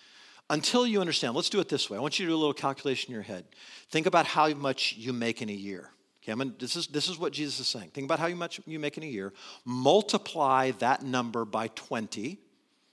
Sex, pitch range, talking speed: male, 135-205 Hz, 245 wpm